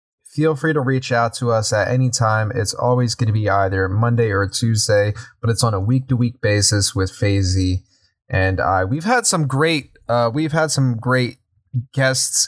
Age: 20-39